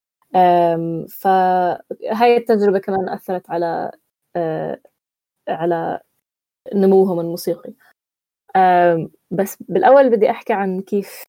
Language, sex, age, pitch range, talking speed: Arabic, female, 20-39, 175-215 Hz, 80 wpm